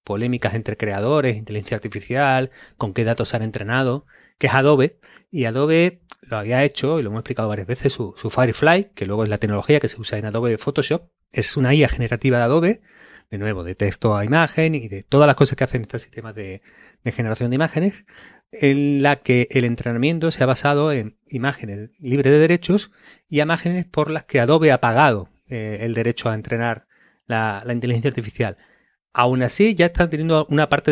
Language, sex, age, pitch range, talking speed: Spanish, male, 30-49, 115-150 Hz, 195 wpm